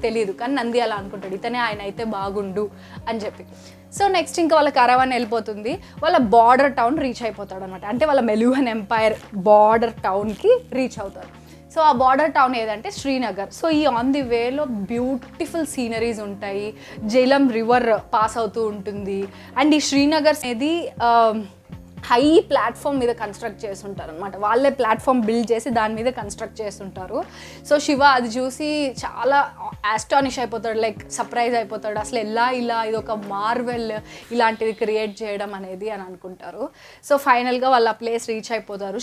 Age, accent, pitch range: 20-39, native, 215-260 Hz